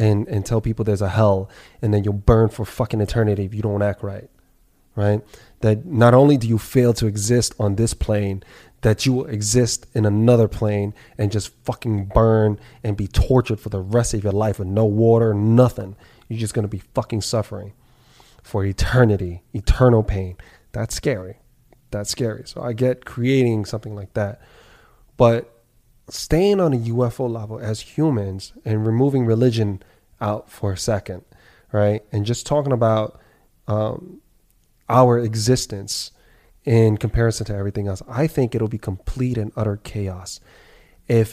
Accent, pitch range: American, 100-120 Hz